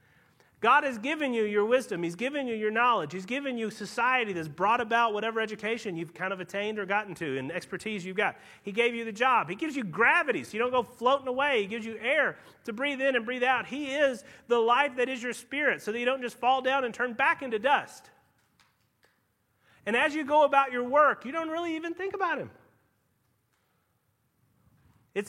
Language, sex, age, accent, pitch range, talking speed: English, male, 40-59, American, 170-265 Hz, 215 wpm